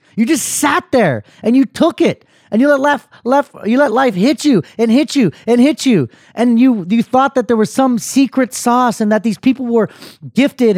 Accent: American